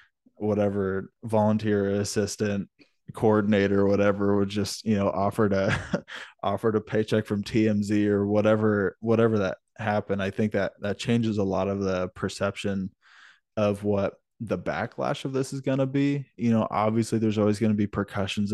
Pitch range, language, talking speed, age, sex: 95-110 Hz, English, 160 wpm, 20-39, male